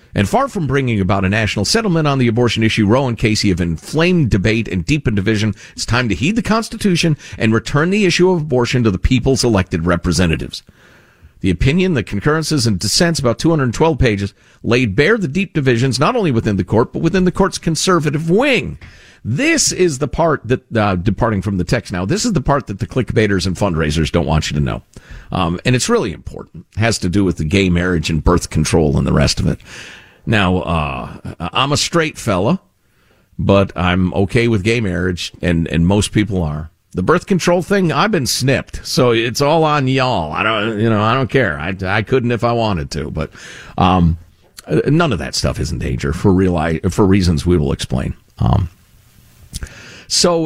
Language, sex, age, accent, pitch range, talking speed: English, male, 50-69, American, 95-150 Hz, 200 wpm